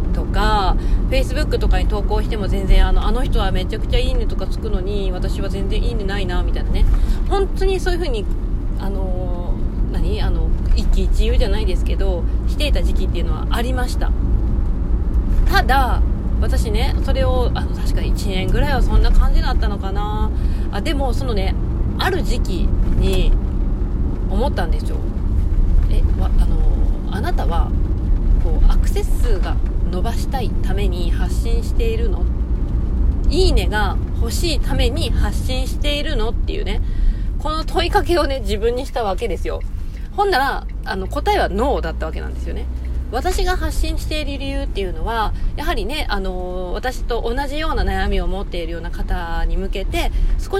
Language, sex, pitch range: Japanese, female, 70-105 Hz